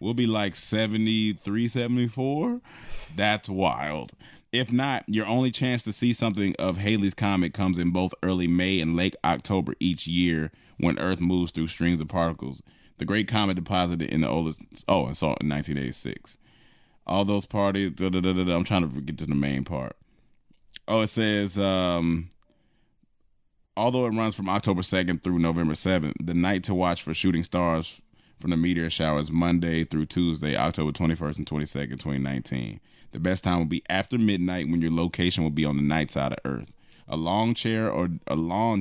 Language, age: English, 20-39